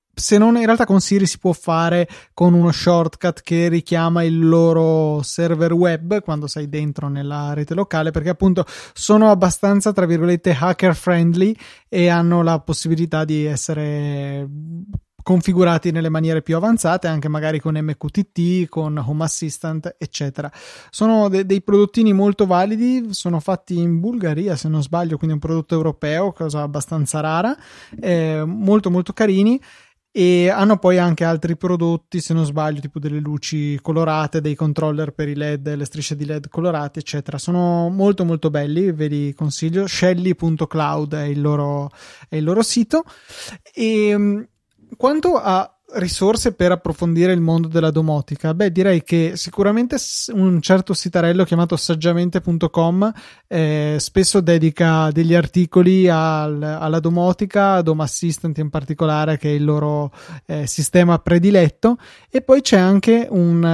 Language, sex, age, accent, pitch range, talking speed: Italian, male, 20-39, native, 155-185 Hz, 145 wpm